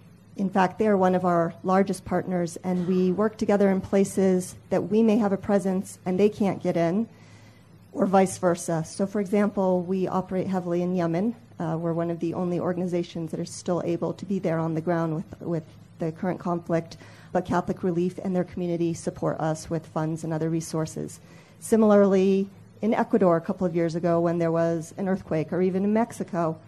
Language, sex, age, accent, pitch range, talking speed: English, female, 40-59, American, 170-200 Hz, 200 wpm